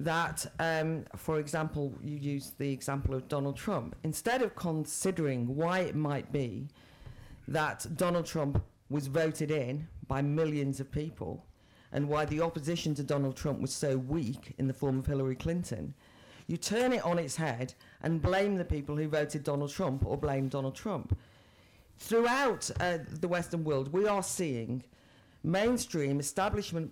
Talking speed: 160 wpm